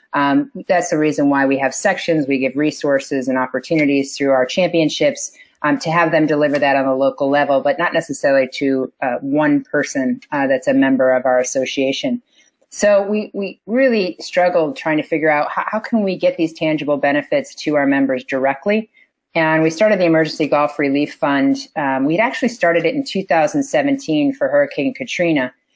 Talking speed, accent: 185 wpm, American